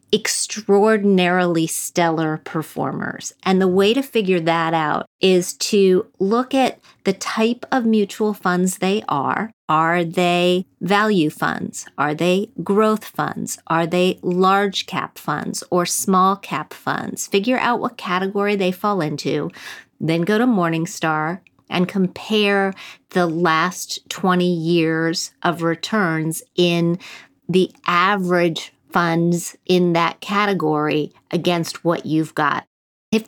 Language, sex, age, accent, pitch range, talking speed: English, female, 40-59, American, 170-210 Hz, 125 wpm